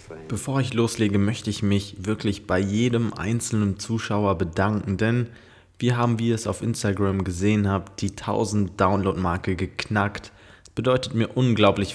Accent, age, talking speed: German, 20-39, 150 wpm